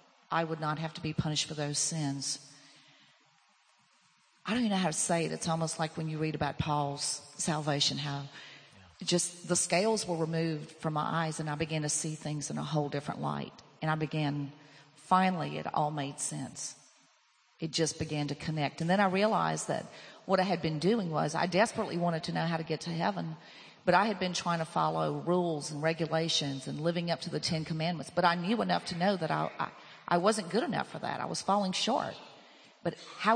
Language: English